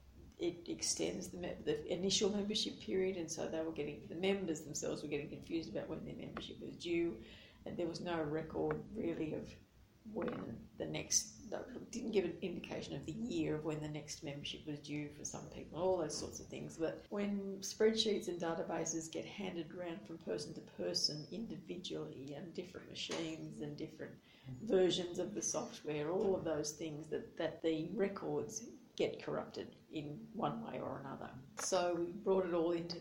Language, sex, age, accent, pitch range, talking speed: English, female, 40-59, Australian, 160-200 Hz, 185 wpm